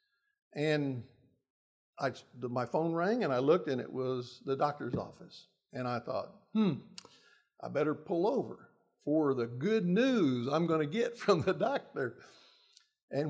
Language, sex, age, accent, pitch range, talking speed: English, male, 60-79, American, 135-220 Hz, 155 wpm